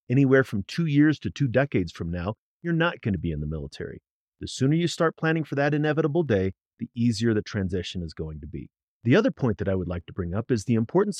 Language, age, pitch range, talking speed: English, 40-59, 100-140 Hz, 250 wpm